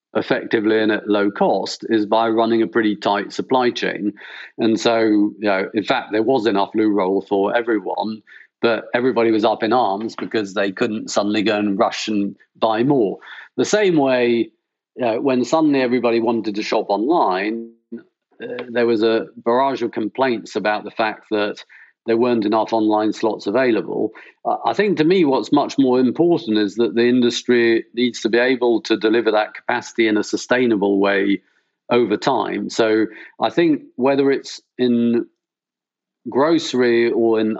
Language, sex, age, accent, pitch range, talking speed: English, male, 40-59, British, 105-120 Hz, 170 wpm